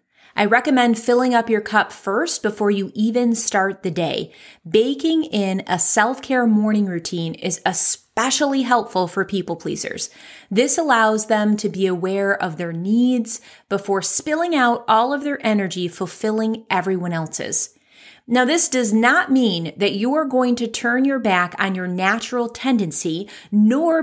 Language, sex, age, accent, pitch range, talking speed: English, female, 30-49, American, 195-245 Hz, 150 wpm